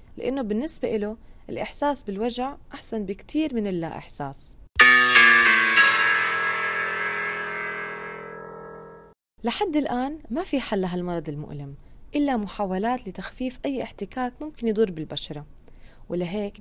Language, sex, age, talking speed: Arabic, female, 20-39, 95 wpm